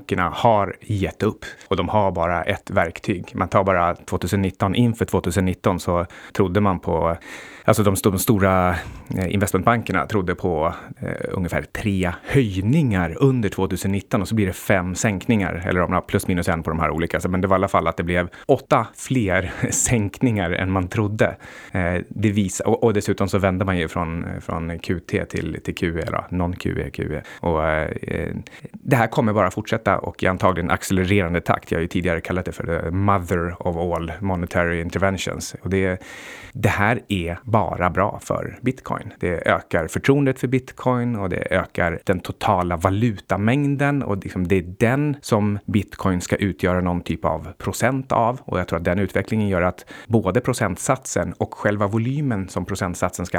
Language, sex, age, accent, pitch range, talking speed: Swedish, male, 30-49, native, 90-110 Hz, 170 wpm